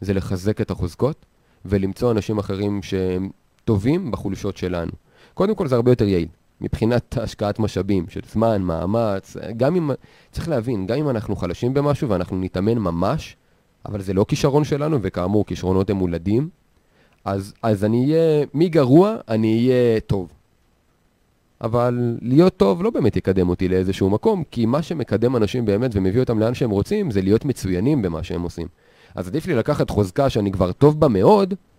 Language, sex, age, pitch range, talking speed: Hebrew, male, 30-49, 95-135 Hz, 165 wpm